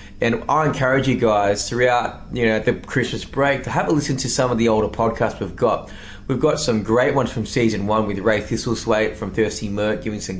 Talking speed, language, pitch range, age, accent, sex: 225 wpm, English, 100-145 Hz, 20-39, Australian, male